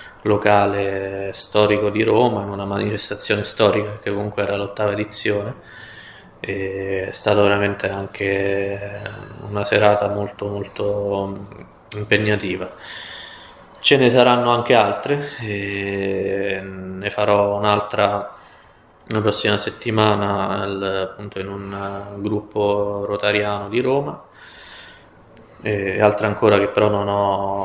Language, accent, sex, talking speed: Italian, native, male, 105 wpm